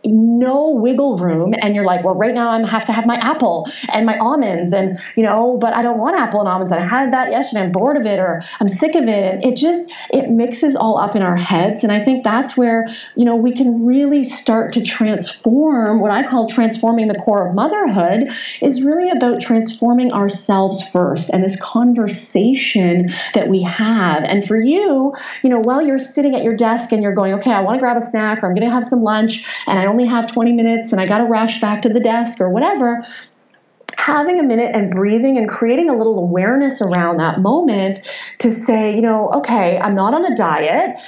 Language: English